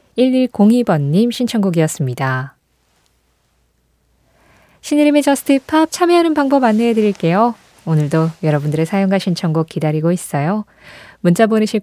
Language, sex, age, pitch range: Korean, female, 20-39, 155-235 Hz